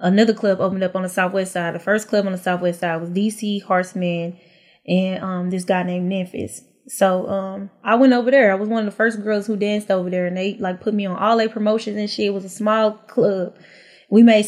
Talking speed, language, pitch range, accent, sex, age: 245 wpm, English, 195-230 Hz, American, female, 10-29